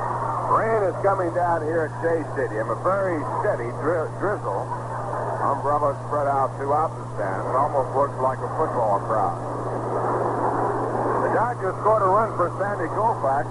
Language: English